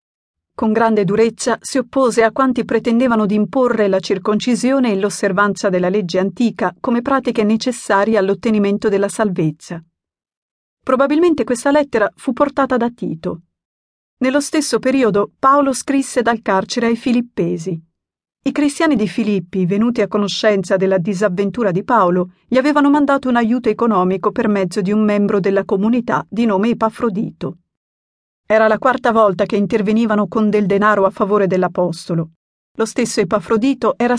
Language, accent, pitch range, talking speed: Italian, native, 200-245 Hz, 145 wpm